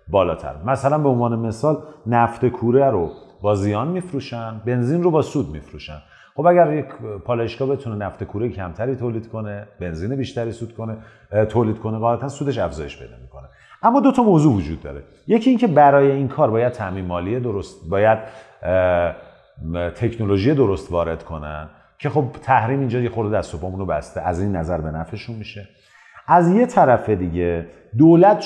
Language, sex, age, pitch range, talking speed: Persian, male, 40-59, 90-140 Hz, 160 wpm